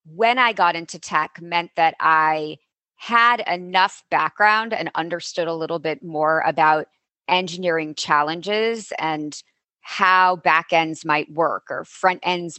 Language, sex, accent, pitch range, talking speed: English, female, American, 160-195 Hz, 140 wpm